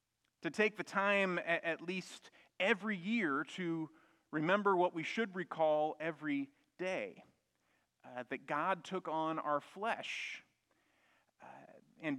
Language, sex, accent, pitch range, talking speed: English, male, American, 150-195 Hz, 125 wpm